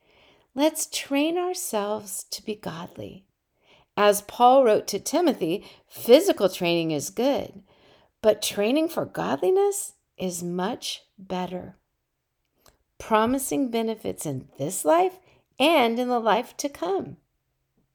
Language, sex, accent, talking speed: English, female, American, 110 wpm